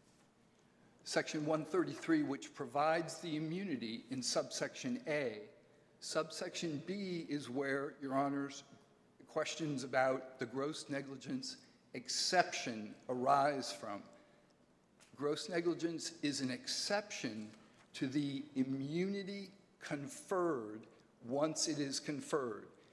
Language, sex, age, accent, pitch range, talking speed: English, male, 50-69, American, 135-175 Hz, 95 wpm